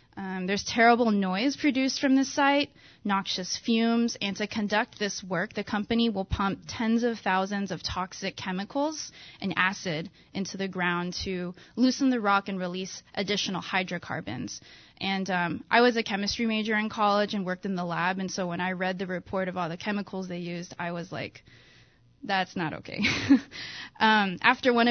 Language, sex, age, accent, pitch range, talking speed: English, female, 20-39, American, 180-220 Hz, 180 wpm